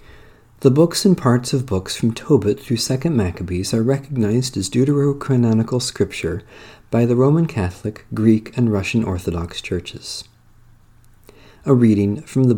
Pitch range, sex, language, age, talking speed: 105-135 Hz, male, English, 50-69, 140 wpm